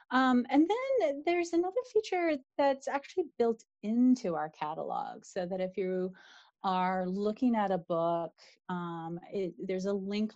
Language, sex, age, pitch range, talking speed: English, female, 30-49, 170-235 Hz, 150 wpm